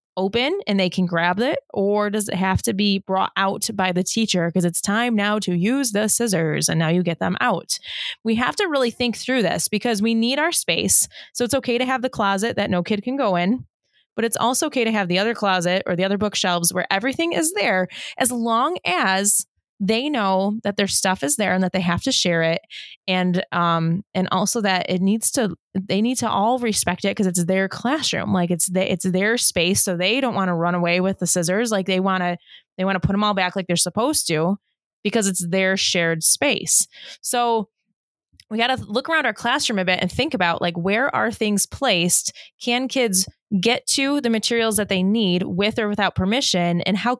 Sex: female